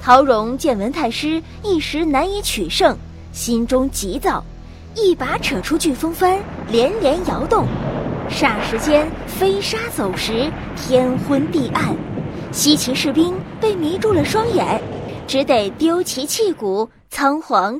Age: 20-39